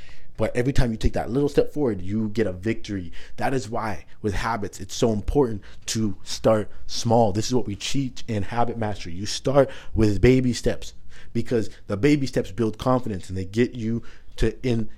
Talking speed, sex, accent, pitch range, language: 195 wpm, male, American, 100-120 Hz, English